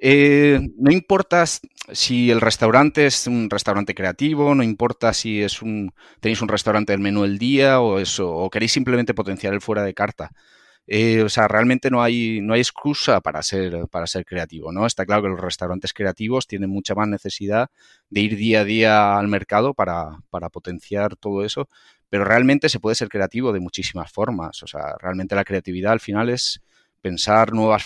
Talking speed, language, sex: 190 wpm, Spanish, male